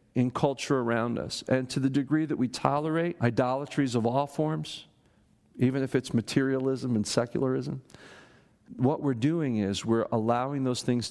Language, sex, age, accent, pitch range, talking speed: English, male, 50-69, American, 110-150 Hz, 155 wpm